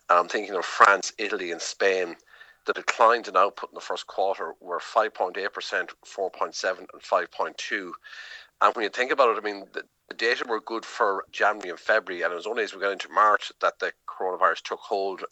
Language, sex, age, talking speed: English, male, 50-69, 195 wpm